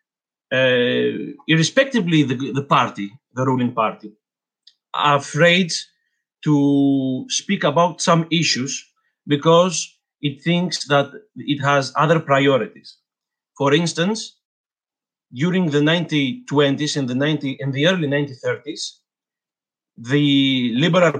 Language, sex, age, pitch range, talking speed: English, male, 50-69, 140-175 Hz, 100 wpm